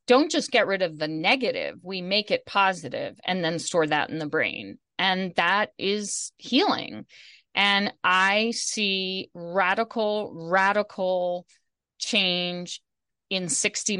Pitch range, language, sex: 180-225 Hz, English, female